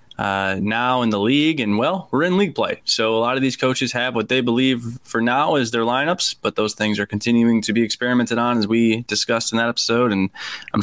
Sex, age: male, 20-39